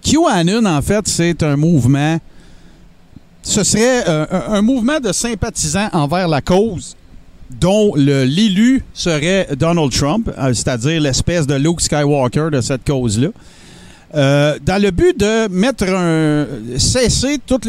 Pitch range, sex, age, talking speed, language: 145-190 Hz, male, 50-69, 130 wpm, French